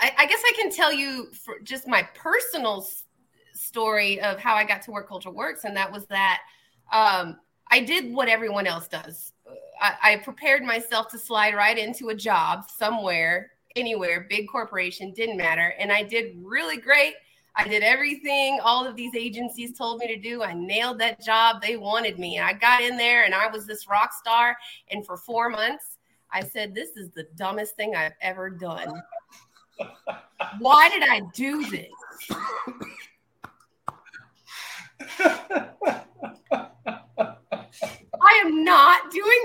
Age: 30-49